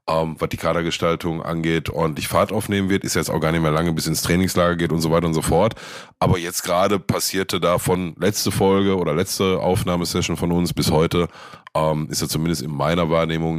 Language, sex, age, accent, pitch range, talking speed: German, male, 20-39, German, 85-105 Hz, 215 wpm